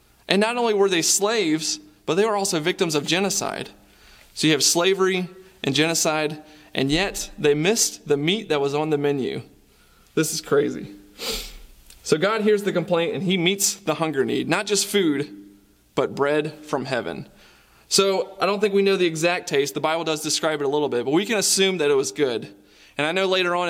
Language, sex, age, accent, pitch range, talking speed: English, male, 20-39, American, 140-190 Hz, 205 wpm